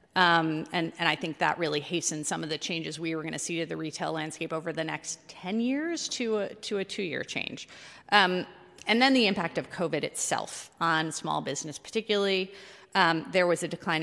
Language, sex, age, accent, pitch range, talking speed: English, female, 30-49, American, 160-190 Hz, 215 wpm